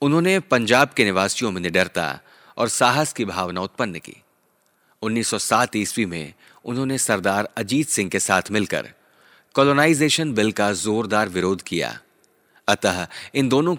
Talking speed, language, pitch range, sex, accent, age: 140 wpm, Hindi, 95-125 Hz, male, native, 30-49